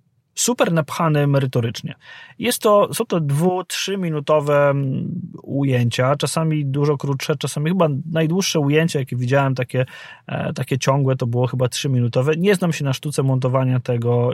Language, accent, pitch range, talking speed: Polish, native, 125-160 Hz, 145 wpm